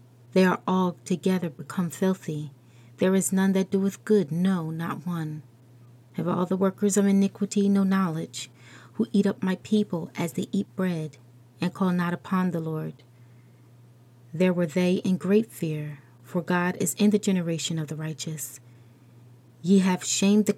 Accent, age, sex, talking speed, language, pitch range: American, 30-49, female, 165 wpm, English, 150-195 Hz